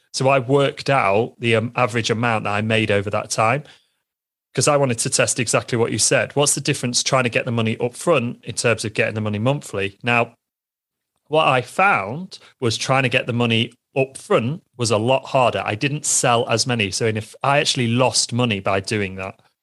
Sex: male